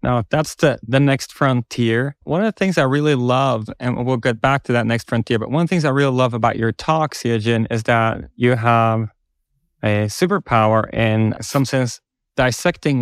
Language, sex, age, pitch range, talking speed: English, male, 20-39, 115-145 Hz, 205 wpm